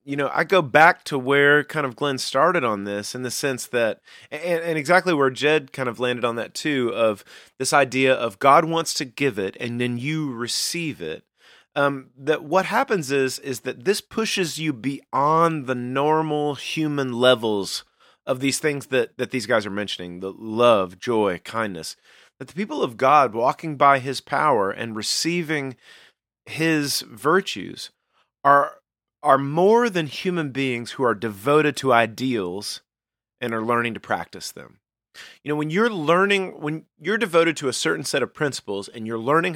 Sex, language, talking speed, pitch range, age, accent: male, English, 175 wpm, 120-155 Hz, 30-49, American